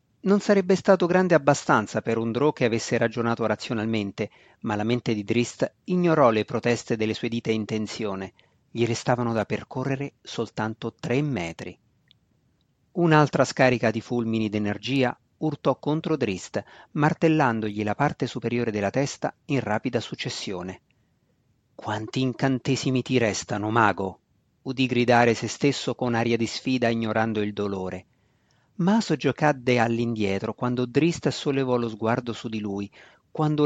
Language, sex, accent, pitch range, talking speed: Italian, male, native, 110-135 Hz, 135 wpm